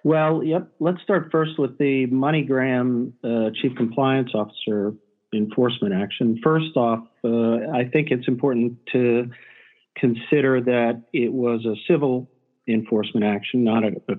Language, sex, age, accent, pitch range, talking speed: English, male, 50-69, American, 115-135 Hz, 135 wpm